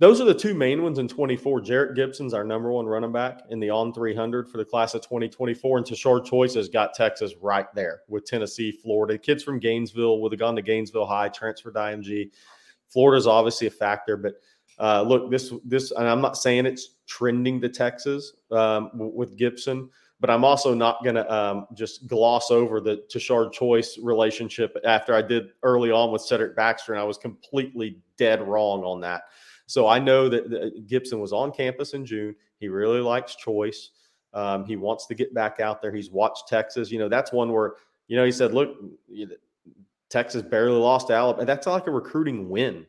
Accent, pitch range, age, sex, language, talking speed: American, 110-130 Hz, 30-49, male, English, 195 wpm